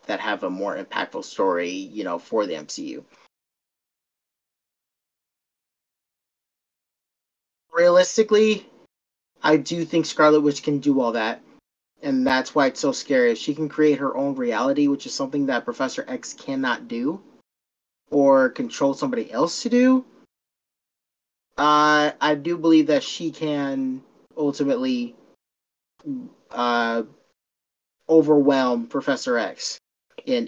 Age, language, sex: 30-49, English, male